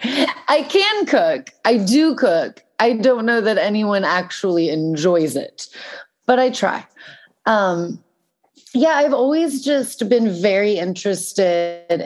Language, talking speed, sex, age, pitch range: English, 125 wpm, female, 30-49, 185-235 Hz